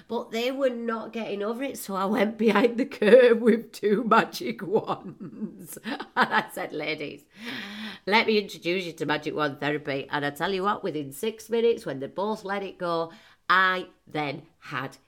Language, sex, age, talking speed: English, female, 30-49, 185 wpm